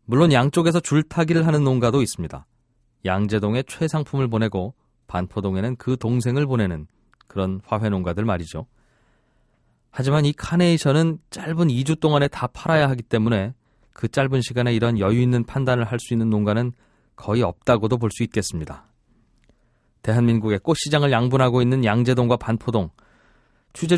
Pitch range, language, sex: 110-135 Hz, Korean, male